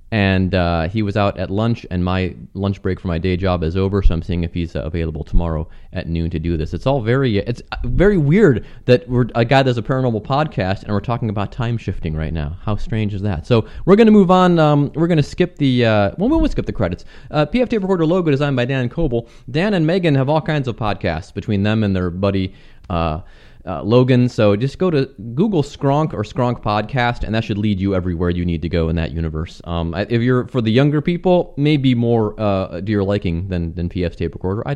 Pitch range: 95-140 Hz